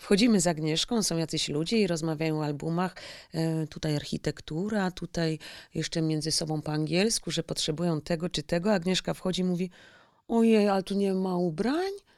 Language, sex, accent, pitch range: Polish, female, native, 160-195 Hz